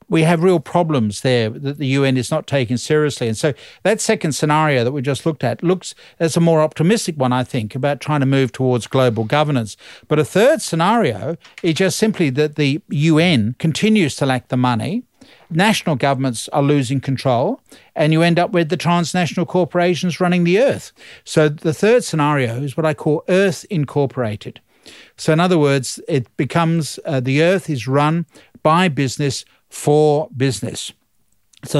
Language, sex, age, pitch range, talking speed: English, male, 50-69, 130-165 Hz, 175 wpm